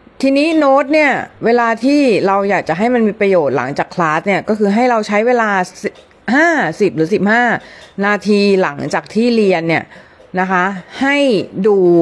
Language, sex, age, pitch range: Thai, female, 30-49, 175-215 Hz